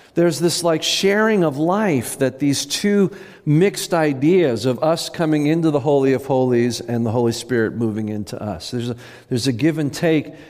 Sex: male